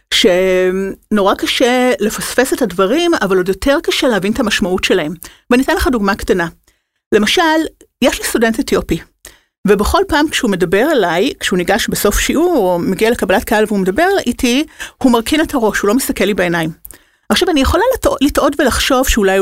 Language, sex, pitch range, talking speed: Hebrew, female, 200-275 Hz, 165 wpm